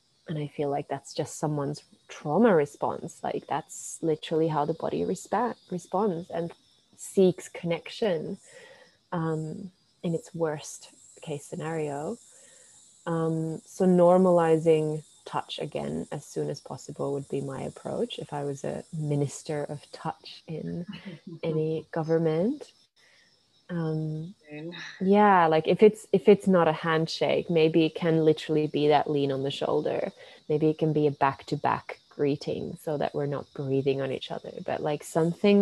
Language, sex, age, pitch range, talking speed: English, female, 20-39, 145-170 Hz, 145 wpm